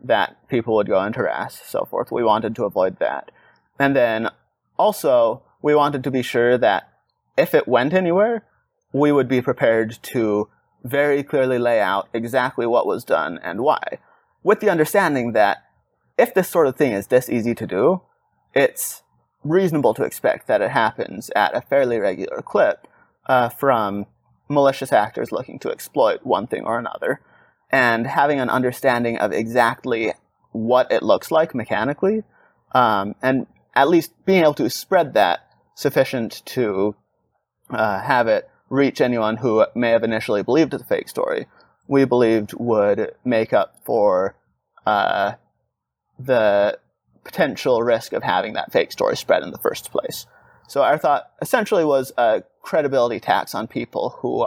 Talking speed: 160 wpm